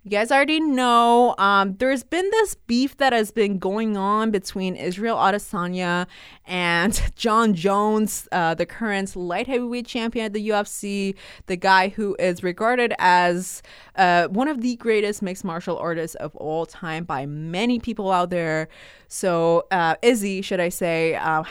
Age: 20-39